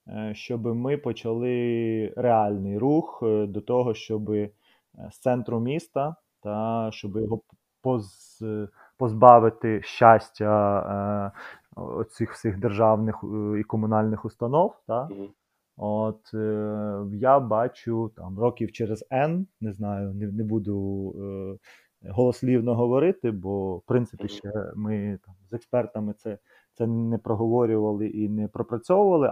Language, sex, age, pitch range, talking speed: Ukrainian, male, 30-49, 105-120 Hz, 100 wpm